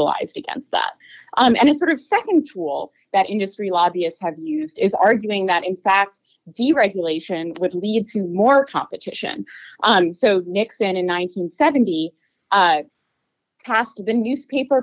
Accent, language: American, English